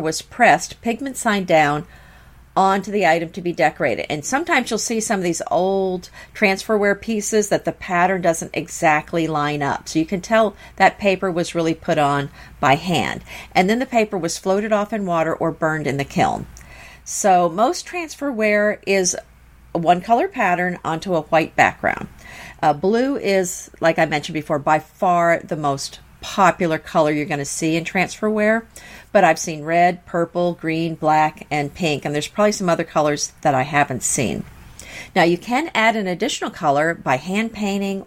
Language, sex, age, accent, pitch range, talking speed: English, female, 50-69, American, 155-210 Hz, 180 wpm